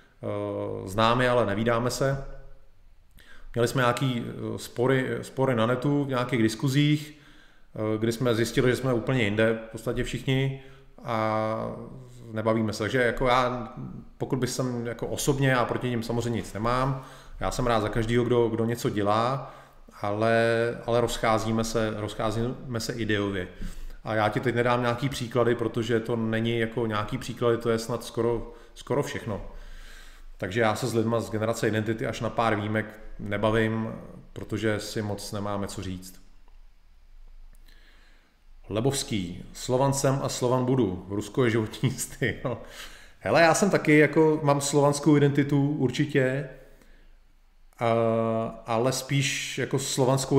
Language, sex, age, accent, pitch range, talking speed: Czech, male, 30-49, native, 110-130 Hz, 140 wpm